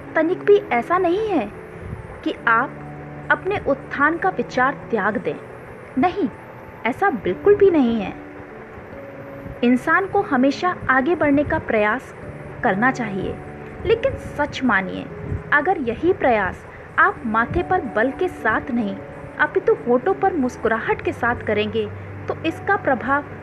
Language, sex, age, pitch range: Hindi, female, 30-49, 245-365 Hz